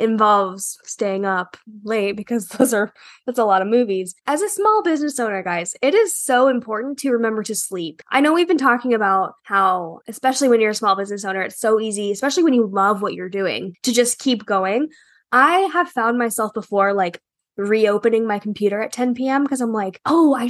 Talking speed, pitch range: 210 wpm, 205-280 Hz